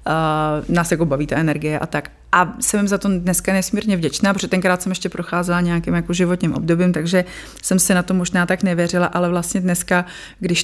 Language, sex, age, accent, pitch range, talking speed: Czech, female, 30-49, native, 160-180 Hz, 205 wpm